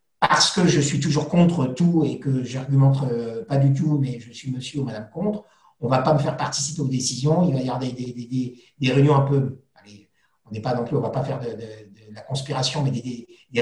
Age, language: 50-69, French